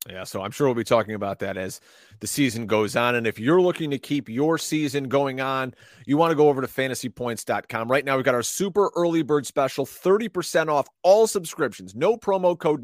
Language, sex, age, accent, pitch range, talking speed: English, male, 30-49, American, 125-195 Hz, 220 wpm